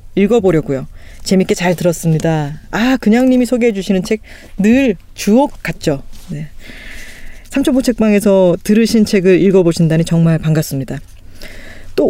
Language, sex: Korean, female